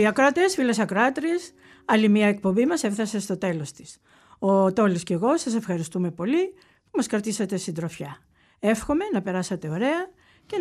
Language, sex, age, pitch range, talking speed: Greek, female, 50-69, 185-310 Hz, 155 wpm